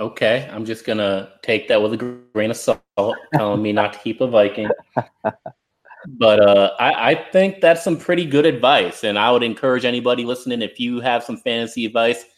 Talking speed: 195 wpm